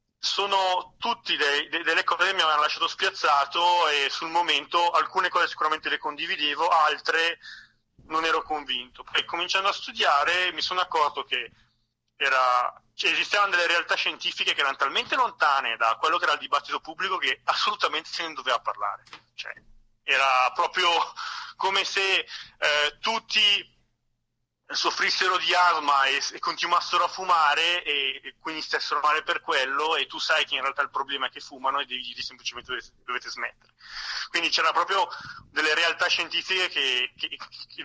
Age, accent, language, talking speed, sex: 30-49, native, Italian, 160 wpm, male